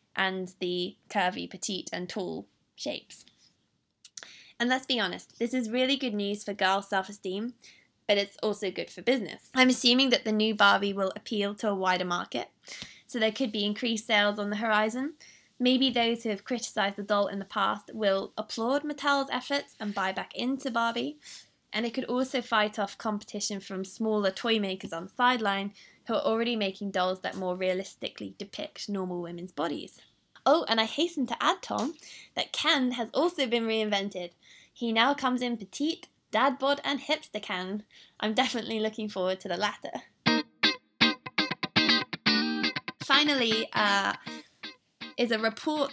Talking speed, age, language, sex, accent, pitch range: 165 wpm, 20-39, English, female, British, 200-250 Hz